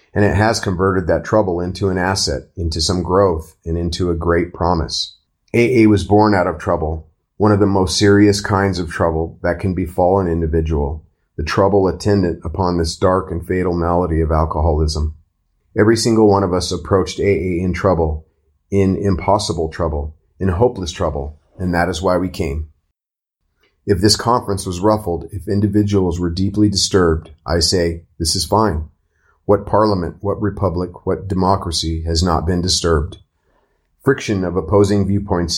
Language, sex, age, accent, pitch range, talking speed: English, male, 30-49, American, 80-100 Hz, 165 wpm